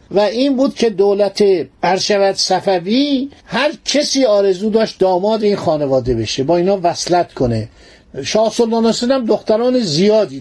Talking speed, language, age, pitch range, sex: 135 wpm, Persian, 50-69, 175-220 Hz, male